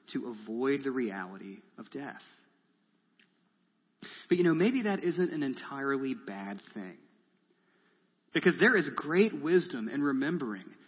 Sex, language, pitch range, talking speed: male, English, 120-190 Hz, 125 wpm